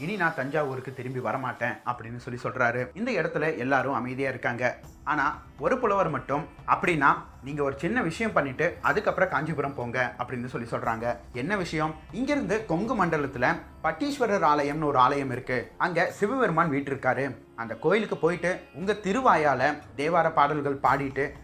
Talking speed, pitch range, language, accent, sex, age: 140 wpm, 130-165 Hz, Tamil, native, male, 30-49